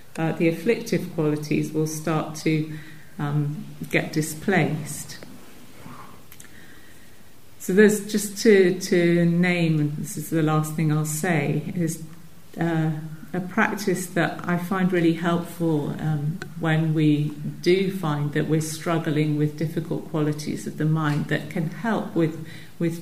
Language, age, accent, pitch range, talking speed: English, 50-69, British, 155-175 Hz, 135 wpm